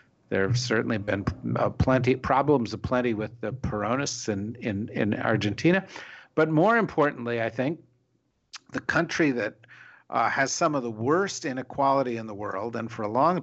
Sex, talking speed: male, 170 wpm